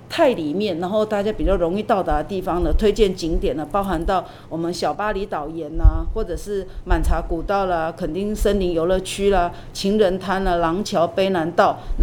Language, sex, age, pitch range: Chinese, female, 40-59, 165-200 Hz